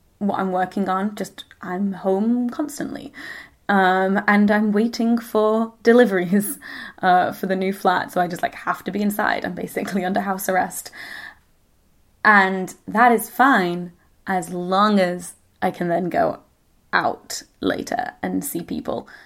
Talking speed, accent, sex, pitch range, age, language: 150 wpm, British, female, 190-245 Hz, 10-29, English